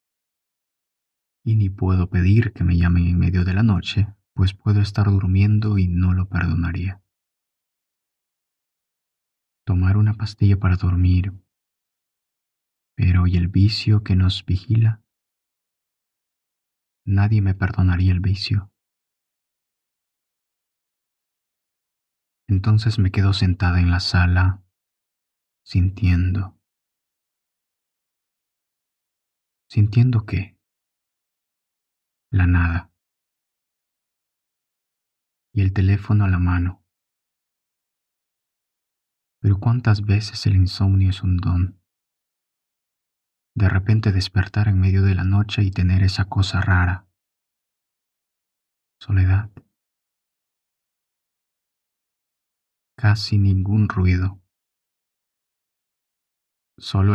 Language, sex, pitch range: Spanish, male, 90-100 Hz